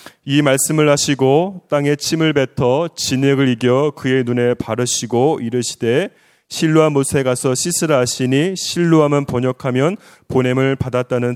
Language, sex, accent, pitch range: Korean, male, native, 135-180 Hz